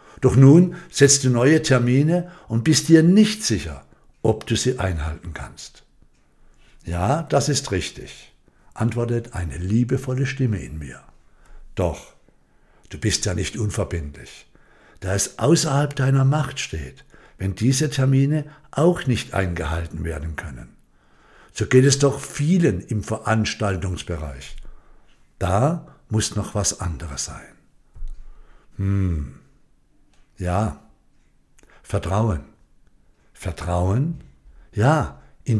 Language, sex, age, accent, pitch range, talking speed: German, male, 60-79, German, 90-135 Hz, 110 wpm